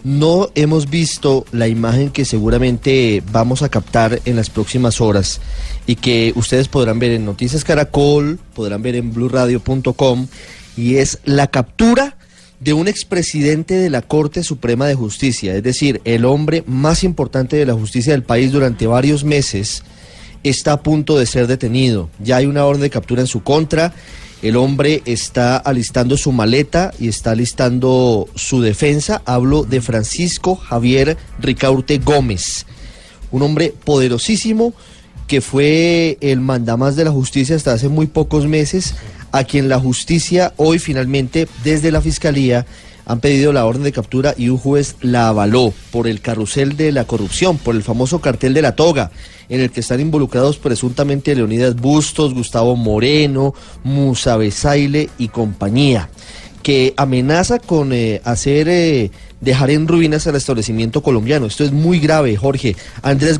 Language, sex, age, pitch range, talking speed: Spanish, male, 30-49, 120-150 Hz, 155 wpm